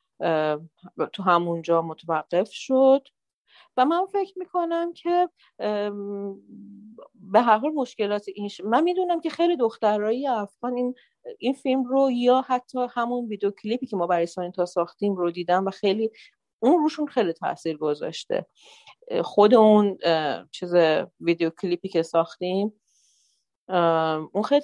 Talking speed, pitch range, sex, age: 130 wpm, 180-230 Hz, female, 40-59